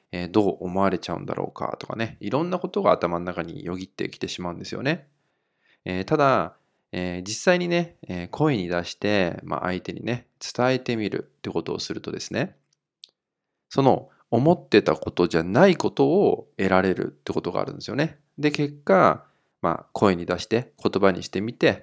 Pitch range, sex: 90-145 Hz, male